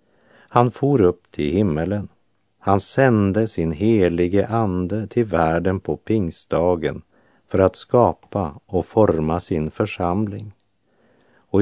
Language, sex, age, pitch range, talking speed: Polish, male, 50-69, 85-110 Hz, 115 wpm